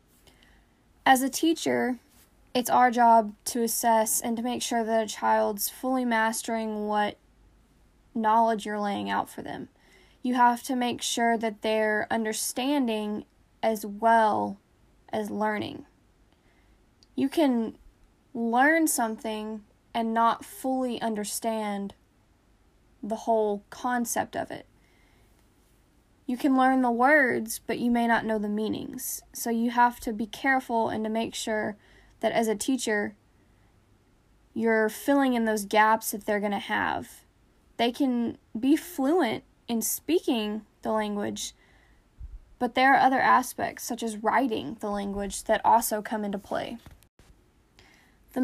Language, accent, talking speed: English, American, 135 wpm